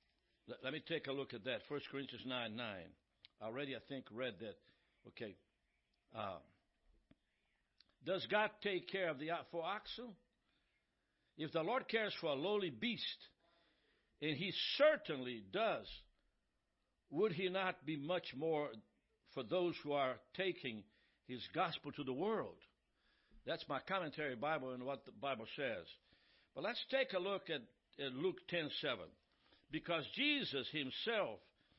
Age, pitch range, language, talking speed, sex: 60-79, 125-180 Hz, English, 145 wpm, male